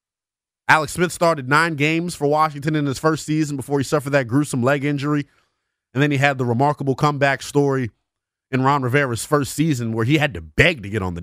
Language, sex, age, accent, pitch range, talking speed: English, male, 30-49, American, 100-145 Hz, 215 wpm